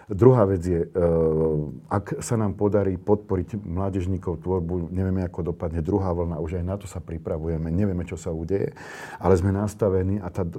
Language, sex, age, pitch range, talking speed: Slovak, male, 40-59, 85-100 Hz, 165 wpm